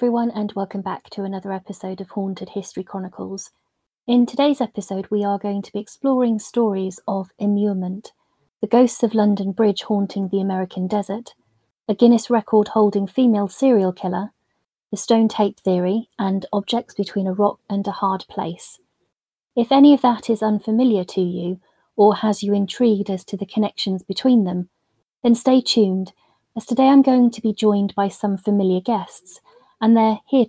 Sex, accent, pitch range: female, British, 195-230 Hz